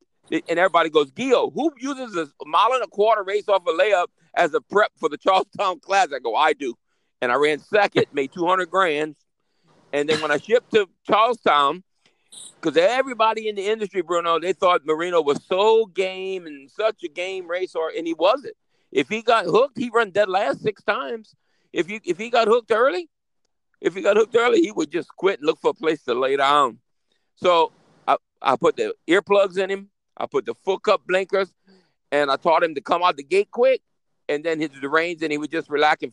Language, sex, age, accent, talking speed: English, male, 50-69, American, 215 wpm